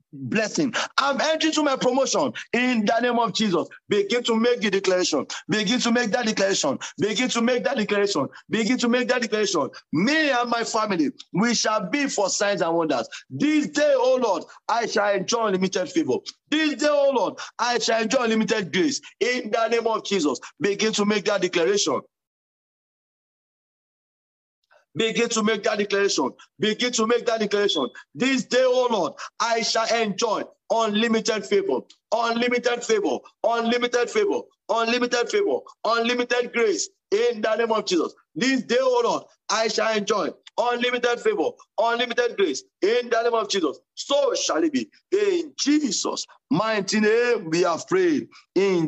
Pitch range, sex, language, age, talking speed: 210-290 Hz, male, English, 50-69, 160 wpm